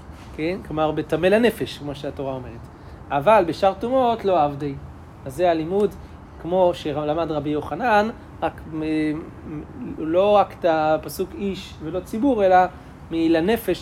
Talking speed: 125 wpm